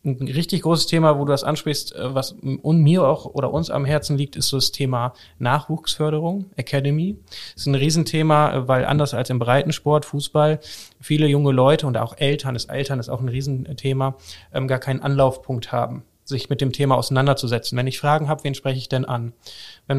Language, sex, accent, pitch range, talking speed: German, male, German, 130-150 Hz, 190 wpm